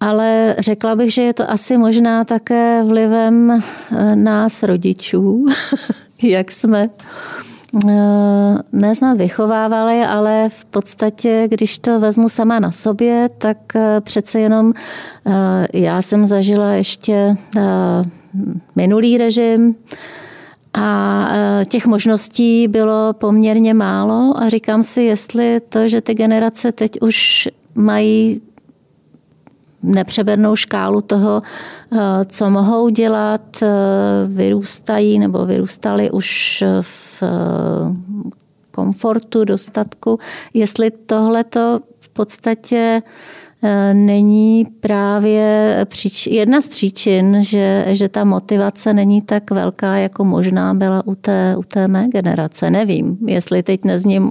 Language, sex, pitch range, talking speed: Czech, female, 200-225 Hz, 105 wpm